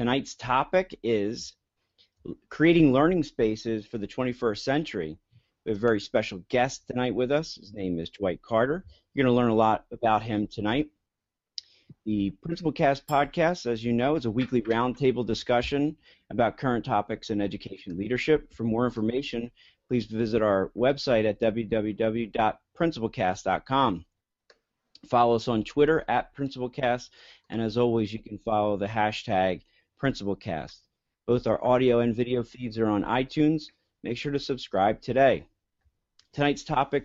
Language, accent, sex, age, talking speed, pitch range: English, American, male, 40-59, 150 wpm, 110-135 Hz